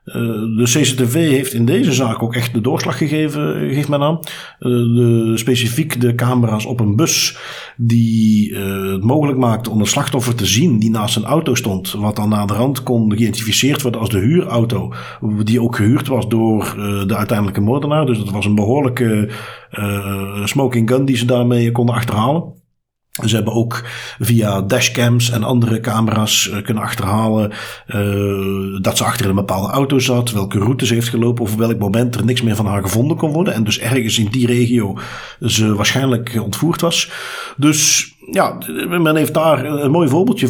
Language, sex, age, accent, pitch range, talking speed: Dutch, male, 50-69, Dutch, 110-130 Hz, 185 wpm